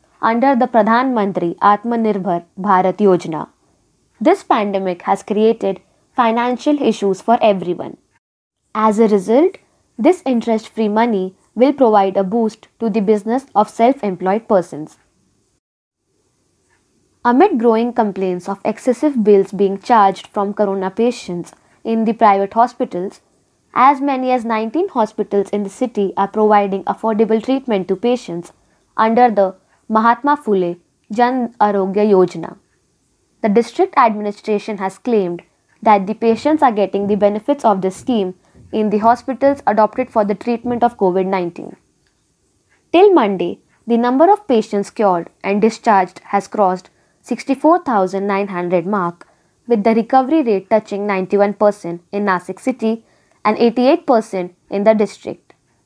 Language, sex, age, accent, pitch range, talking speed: Marathi, female, 20-39, native, 195-235 Hz, 135 wpm